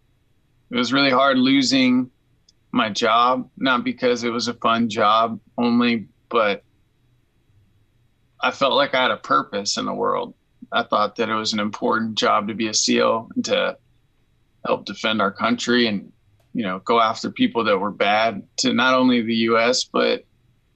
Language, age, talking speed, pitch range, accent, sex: English, 20-39, 170 wpm, 105-130 Hz, American, male